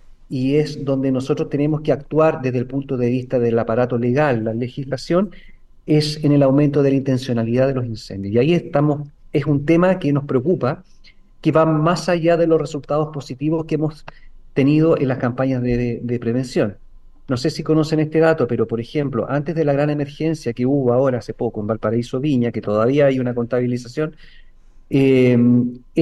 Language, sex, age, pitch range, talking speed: Spanish, male, 40-59, 125-155 Hz, 185 wpm